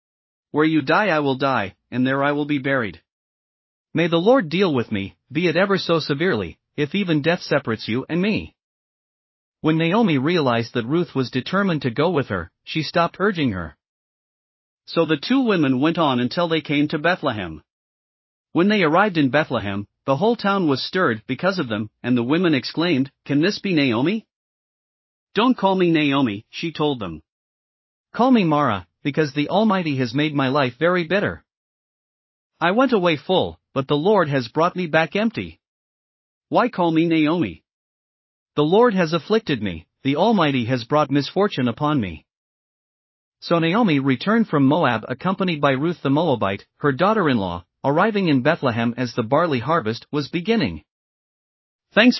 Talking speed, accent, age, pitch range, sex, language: 170 wpm, American, 40-59, 130-175 Hz, male, English